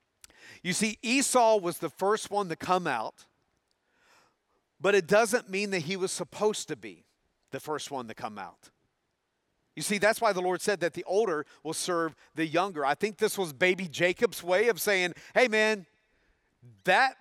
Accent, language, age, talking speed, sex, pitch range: American, English, 40-59, 180 wpm, male, 160-215 Hz